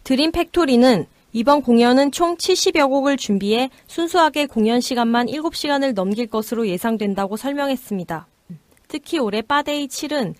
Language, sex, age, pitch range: Korean, female, 20-39, 205-275 Hz